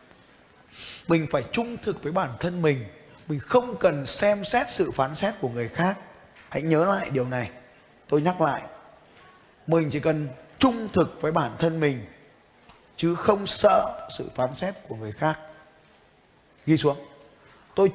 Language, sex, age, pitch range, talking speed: Vietnamese, male, 20-39, 140-185 Hz, 160 wpm